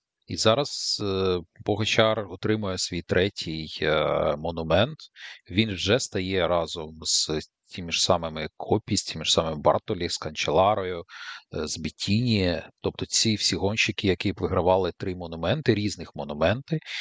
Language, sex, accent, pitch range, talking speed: Ukrainian, male, native, 85-110 Hz, 125 wpm